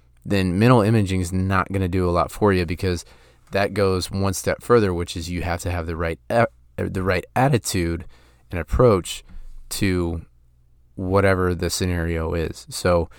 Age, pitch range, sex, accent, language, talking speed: 30-49, 85-100 Hz, male, American, English, 170 wpm